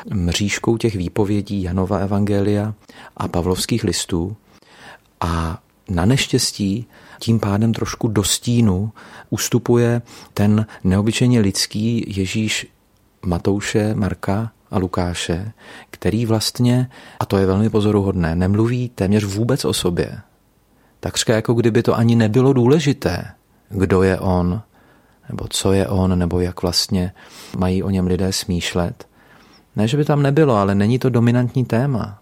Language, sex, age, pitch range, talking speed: Czech, male, 40-59, 95-115 Hz, 130 wpm